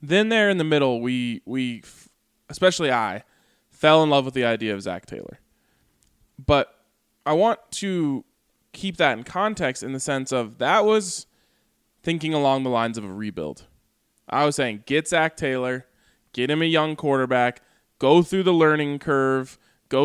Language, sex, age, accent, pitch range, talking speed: English, male, 20-39, American, 120-150 Hz, 170 wpm